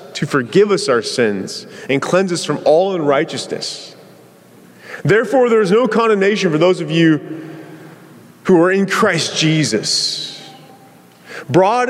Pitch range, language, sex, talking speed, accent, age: 115-170 Hz, English, male, 130 wpm, American, 30-49